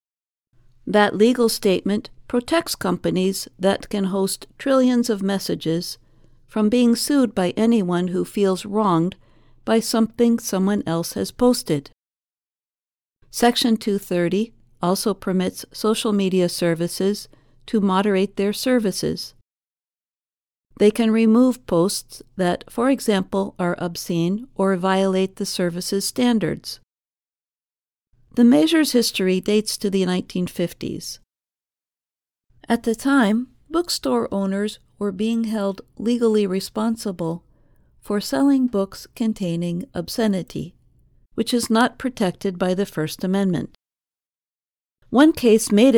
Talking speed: 110 wpm